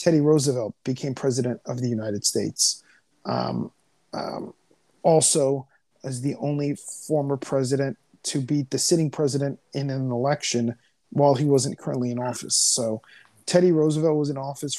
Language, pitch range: English, 130-150 Hz